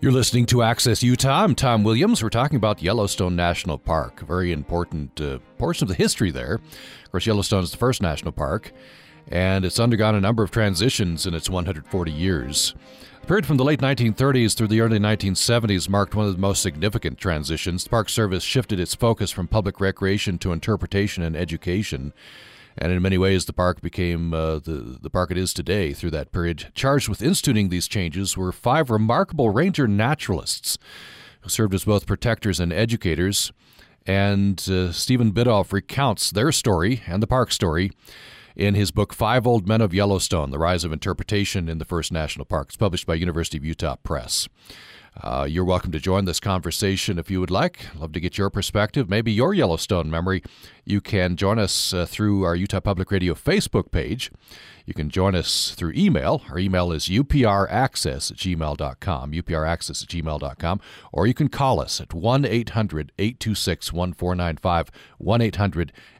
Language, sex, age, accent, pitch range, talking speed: English, male, 40-59, American, 85-110 Hz, 175 wpm